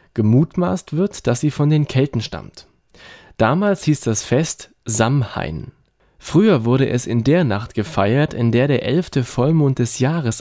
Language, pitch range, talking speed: German, 115-165 Hz, 155 wpm